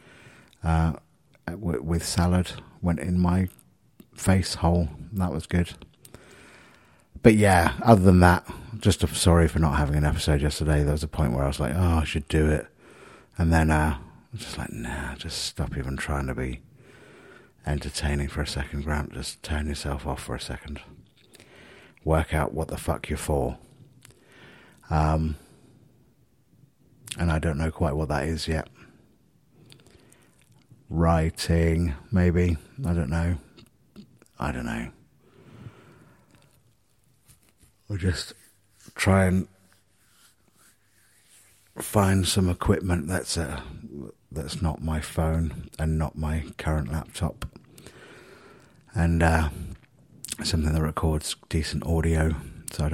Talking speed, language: 130 wpm, English